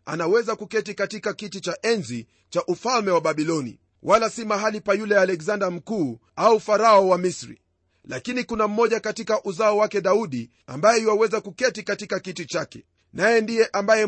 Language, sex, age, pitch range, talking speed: Swahili, male, 40-59, 175-225 Hz, 160 wpm